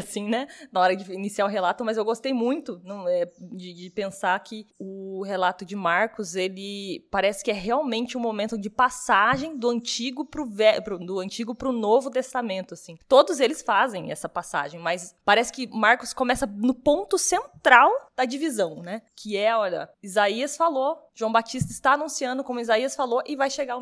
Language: Portuguese